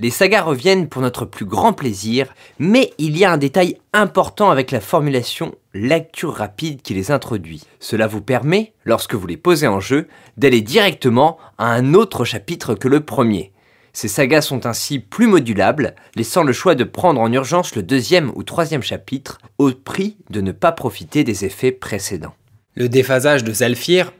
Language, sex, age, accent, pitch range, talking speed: French, male, 30-49, French, 115-160 Hz, 180 wpm